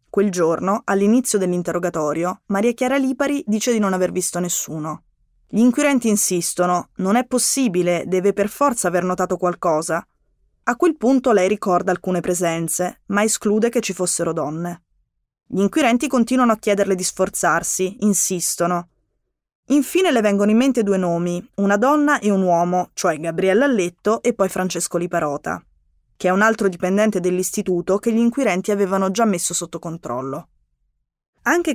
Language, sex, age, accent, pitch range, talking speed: Italian, female, 20-39, native, 175-220 Hz, 150 wpm